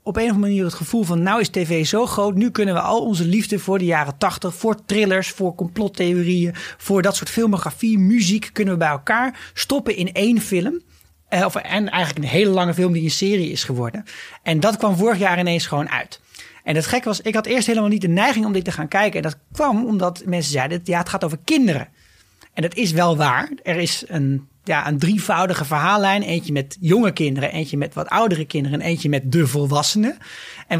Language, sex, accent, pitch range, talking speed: Dutch, male, Dutch, 160-205 Hz, 220 wpm